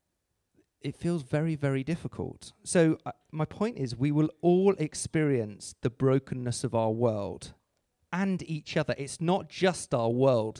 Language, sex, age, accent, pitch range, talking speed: English, male, 40-59, British, 125-170 Hz, 155 wpm